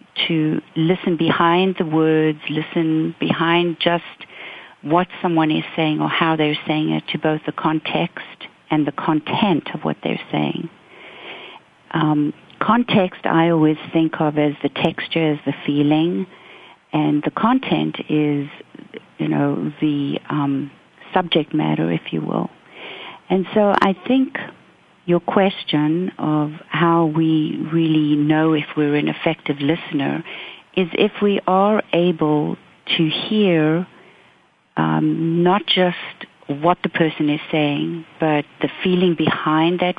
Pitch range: 150-180 Hz